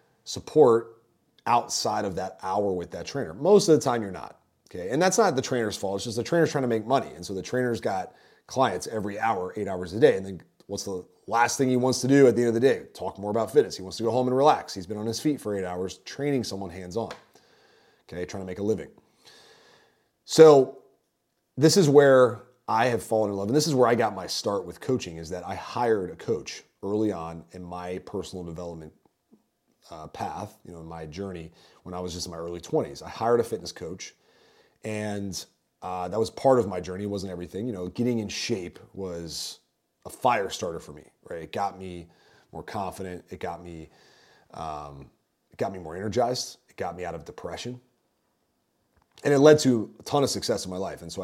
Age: 30-49